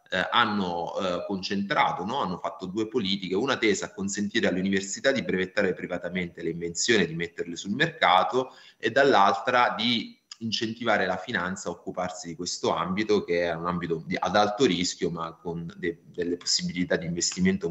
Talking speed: 170 wpm